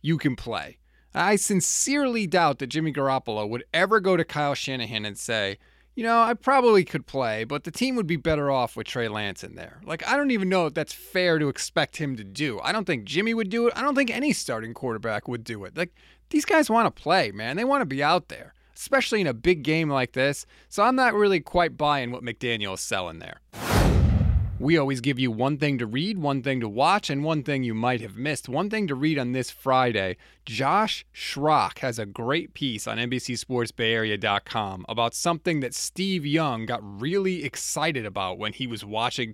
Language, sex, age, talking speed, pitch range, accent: English, male, 30-49, 215 wpm, 120-185 Hz, American